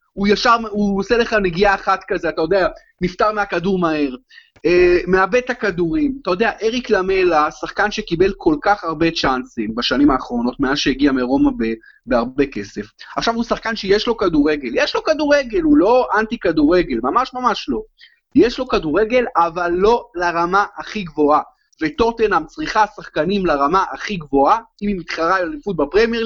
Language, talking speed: Hebrew, 160 wpm